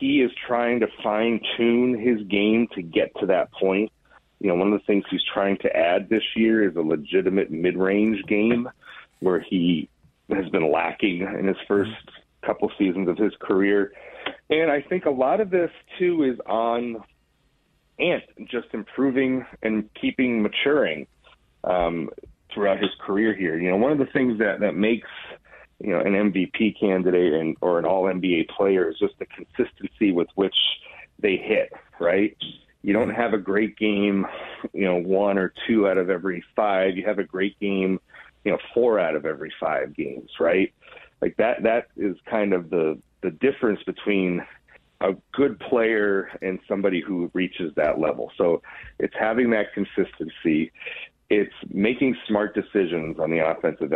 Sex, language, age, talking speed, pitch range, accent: male, English, 30-49, 170 wpm, 95-120 Hz, American